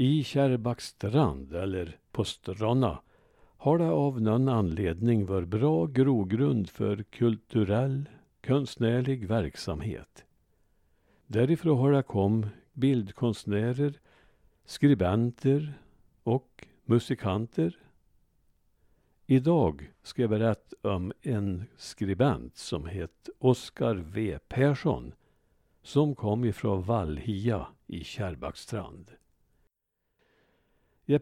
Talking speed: 85 wpm